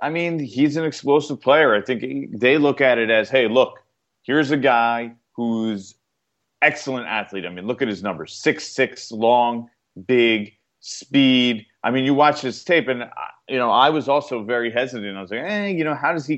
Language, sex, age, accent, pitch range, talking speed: English, male, 40-59, American, 115-150 Hz, 205 wpm